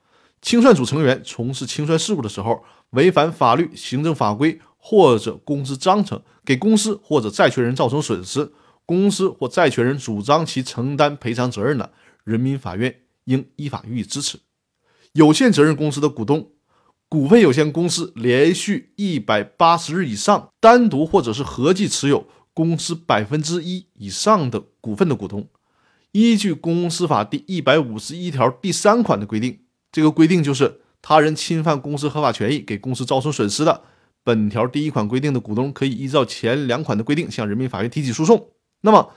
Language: Chinese